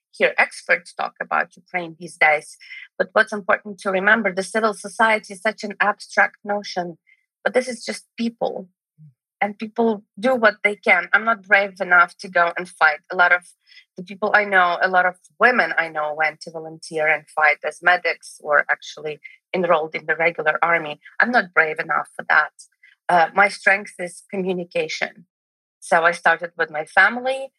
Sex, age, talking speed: female, 30-49, 180 wpm